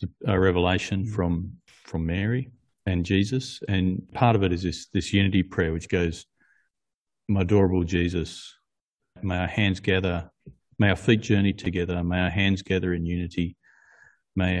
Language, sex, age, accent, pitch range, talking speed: English, male, 40-59, Australian, 85-105 Hz, 150 wpm